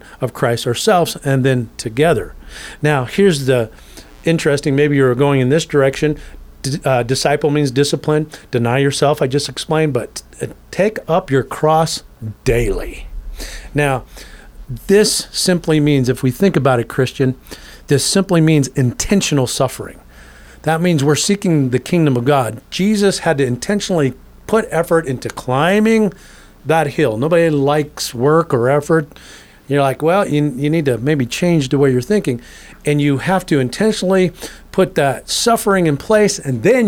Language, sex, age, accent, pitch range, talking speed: English, male, 40-59, American, 135-170 Hz, 155 wpm